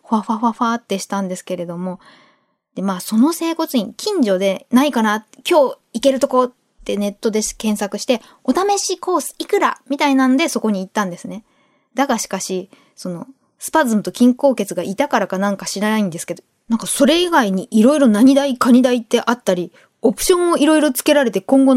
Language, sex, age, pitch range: Japanese, female, 20-39, 210-290 Hz